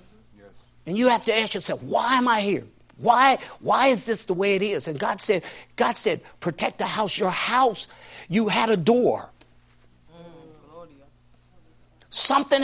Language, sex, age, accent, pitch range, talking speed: English, male, 50-69, American, 155-260 Hz, 155 wpm